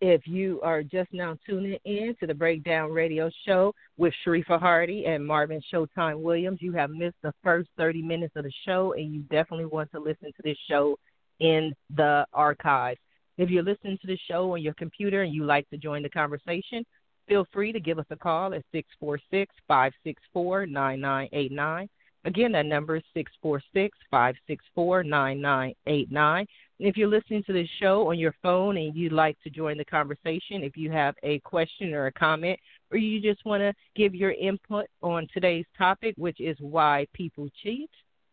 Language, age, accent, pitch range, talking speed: English, 40-59, American, 145-185 Hz, 170 wpm